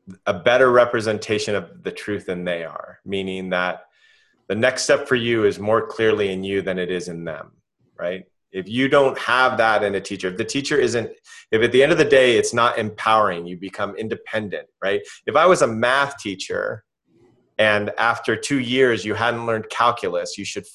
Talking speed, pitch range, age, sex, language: 200 wpm, 95-125 Hz, 30-49, male, English